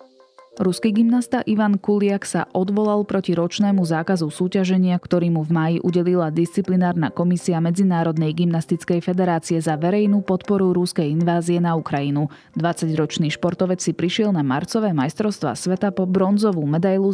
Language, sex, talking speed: Slovak, female, 135 wpm